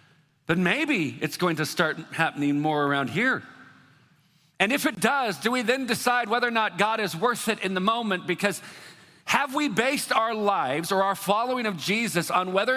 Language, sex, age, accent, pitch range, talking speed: English, male, 40-59, American, 175-235 Hz, 195 wpm